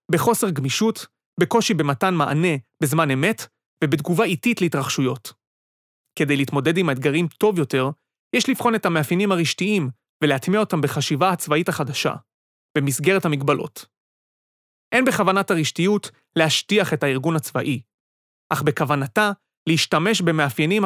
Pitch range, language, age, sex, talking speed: 145-200 Hz, Hebrew, 30-49, male, 110 wpm